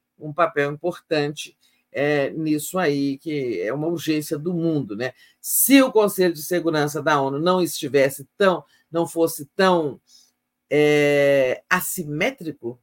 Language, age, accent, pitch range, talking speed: Portuguese, 50-69, Brazilian, 140-185 Hz, 120 wpm